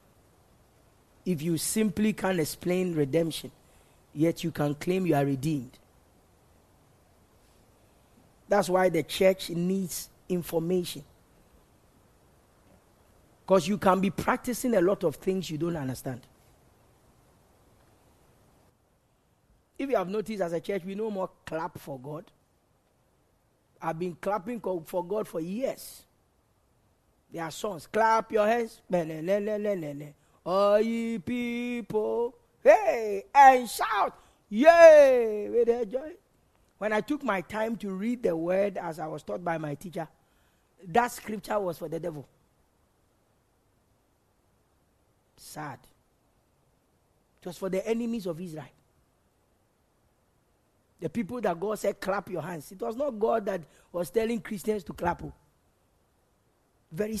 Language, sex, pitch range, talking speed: English, male, 160-215 Hz, 120 wpm